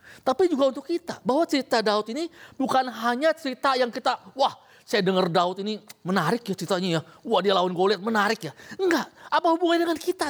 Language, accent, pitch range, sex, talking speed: Indonesian, native, 225-310 Hz, male, 190 wpm